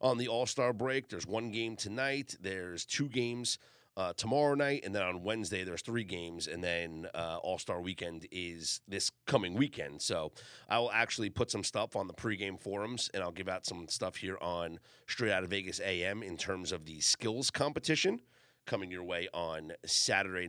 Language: English